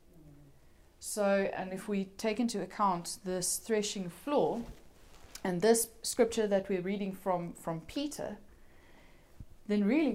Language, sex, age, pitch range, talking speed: English, female, 30-49, 160-195 Hz, 125 wpm